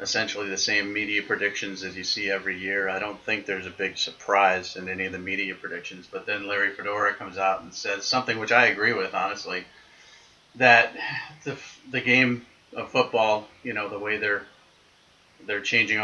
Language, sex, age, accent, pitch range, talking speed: English, male, 30-49, American, 100-120 Hz, 185 wpm